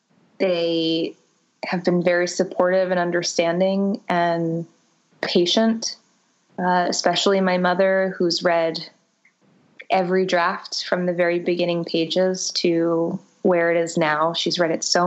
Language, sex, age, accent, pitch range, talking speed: English, female, 20-39, American, 170-190 Hz, 125 wpm